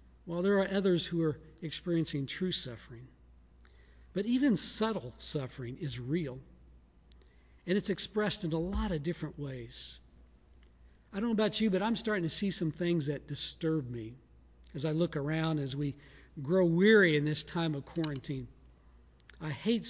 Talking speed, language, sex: 165 wpm, English, male